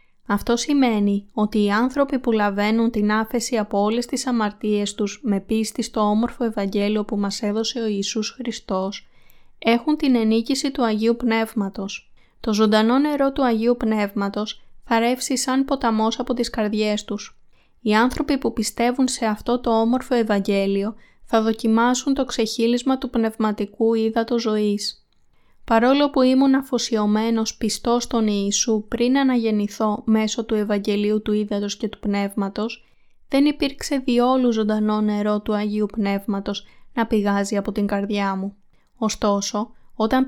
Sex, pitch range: female, 210-245 Hz